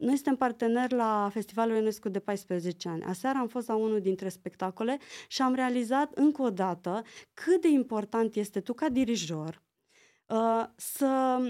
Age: 20-39